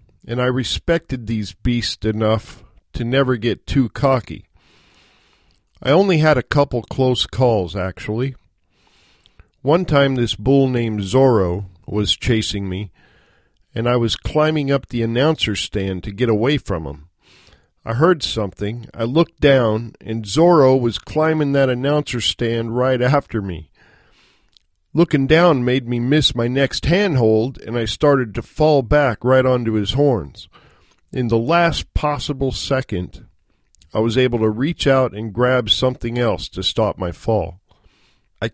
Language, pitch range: English, 100-135 Hz